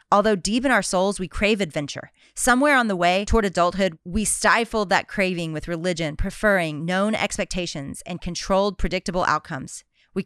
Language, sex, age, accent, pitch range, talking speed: English, female, 30-49, American, 175-225 Hz, 165 wpm